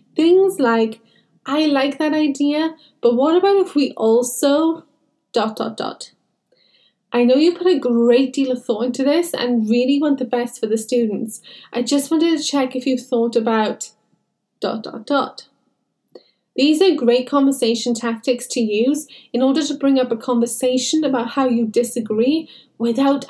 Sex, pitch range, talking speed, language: female, 235-285 Hz, 165 wpm, English